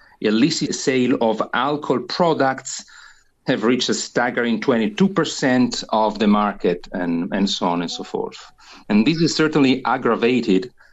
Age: 40-59